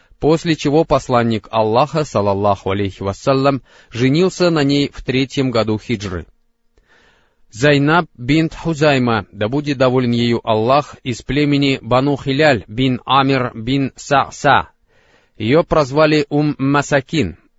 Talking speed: 115 wpm